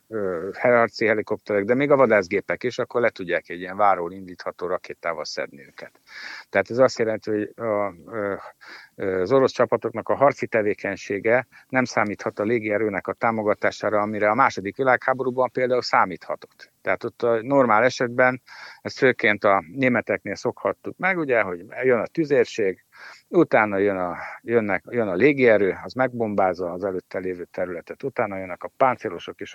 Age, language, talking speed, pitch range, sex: 60-79, Hungarian, 150 wpm, 105-130 Hz, male